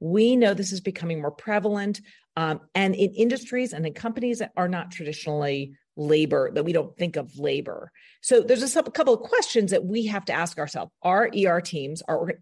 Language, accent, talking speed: English, American, 210 wpm